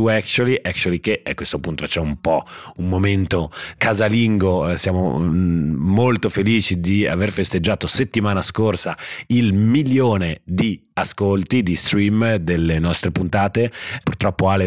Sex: male